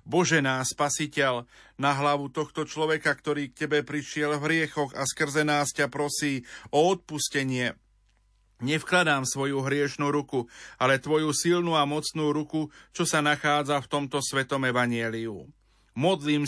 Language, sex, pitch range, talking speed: Slovak, male, 135-155 Hz, 140 wpm